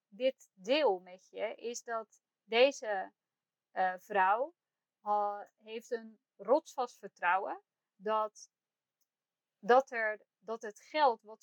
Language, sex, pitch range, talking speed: Dutch, female, 200-265 Hz, 110 wpm